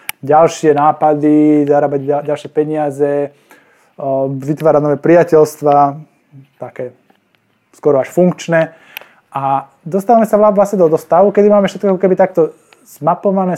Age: 20-39